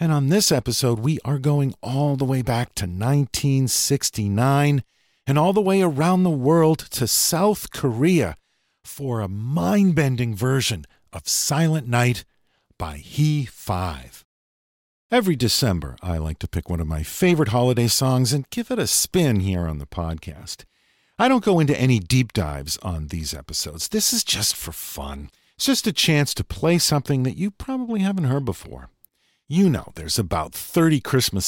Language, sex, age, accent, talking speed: English, male, 50-69, American, 165 wpm